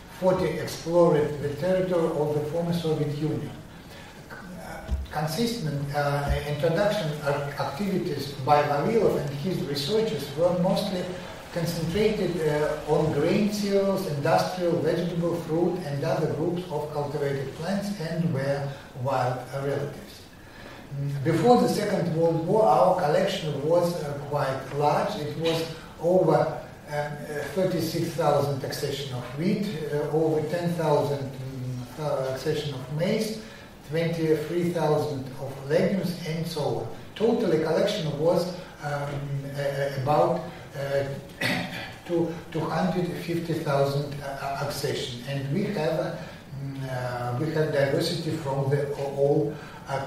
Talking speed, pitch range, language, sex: 110 wpm, 140-170 Hz, Turkish, male